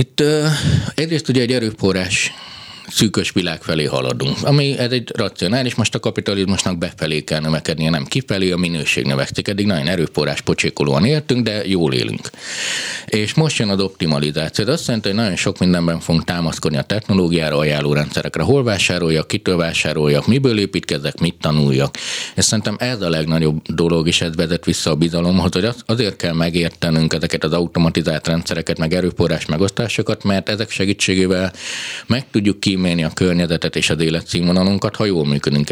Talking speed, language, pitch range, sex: 160 wpm, Hungarian, 85-115 Hz, male